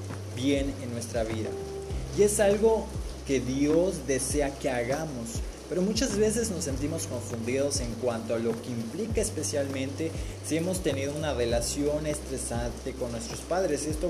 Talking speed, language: 150 wpm, Spanish